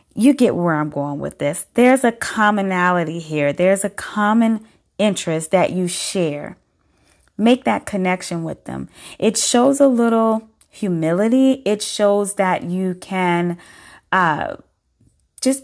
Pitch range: 180-230 Hz